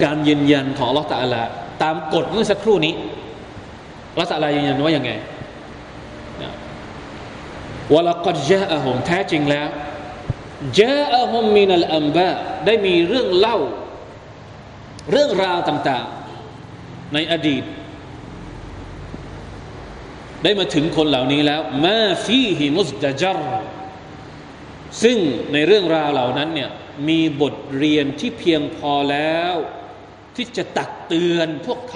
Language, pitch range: Thai, 135-185 Hz